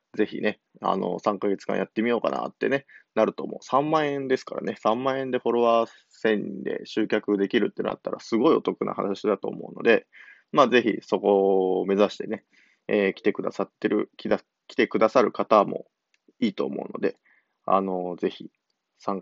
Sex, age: male, 20-39